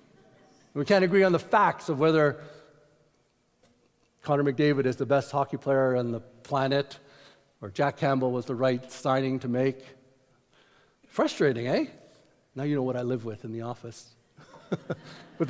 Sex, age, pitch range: male, 50-69, 150-230 Hz